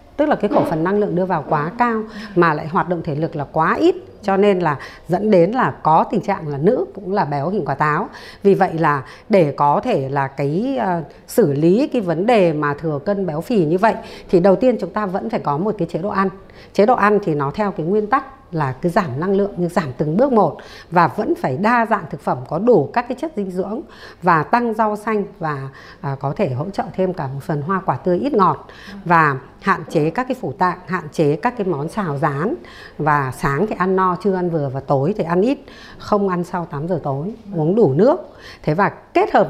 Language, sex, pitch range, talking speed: Vietnamese, female, 160-210 Hz, 250 wpm